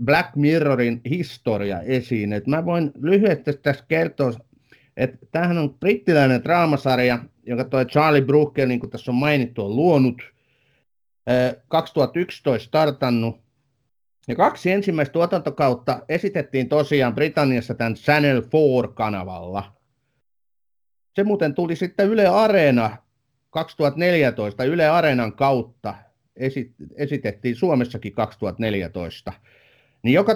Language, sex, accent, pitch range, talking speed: Finnish, male, native, 115-150 Hz, 95 wpm